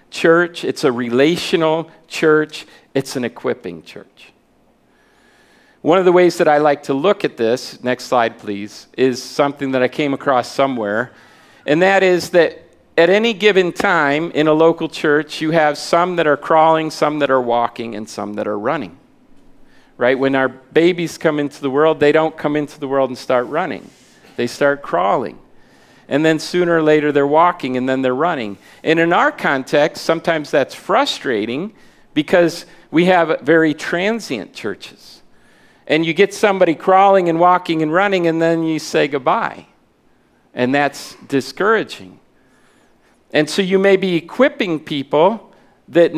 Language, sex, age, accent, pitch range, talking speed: English, male, 40-59, American, 140-175 Hz, 165 wpm